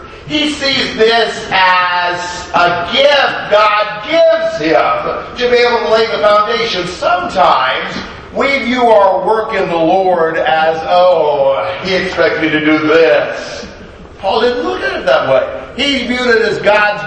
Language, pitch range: English, 170-225 Hz